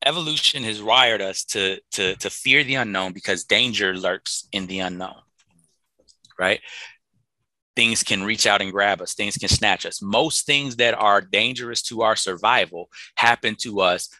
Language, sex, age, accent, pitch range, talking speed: English, male, 30-49, American, 105-160 Hz, 160 wpm